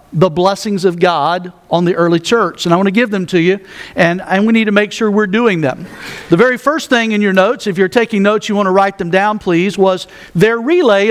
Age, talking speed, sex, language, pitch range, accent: 50-69, 255 wpm, male, English, 195-240 Hz, American